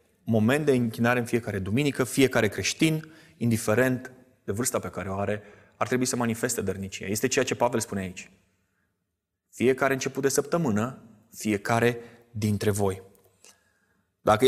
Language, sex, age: Romanian, male, 20-39